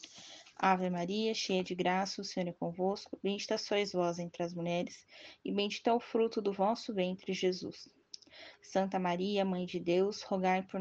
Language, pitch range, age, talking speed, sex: Portuguese, 190-270 Hz, 10-29, 170 wpm, female